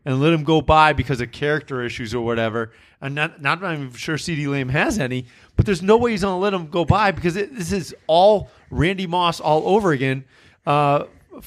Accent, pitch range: American, 135-175 Hz